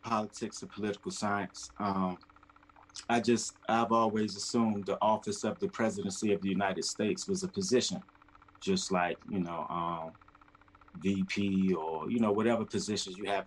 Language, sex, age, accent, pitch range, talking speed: English, male, 30-49, American, 100-115 Hz, 155 wpm